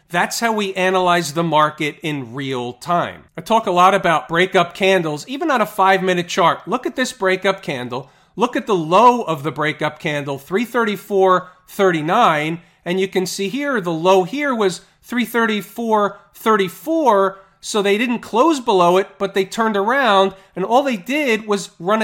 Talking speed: 165 wpm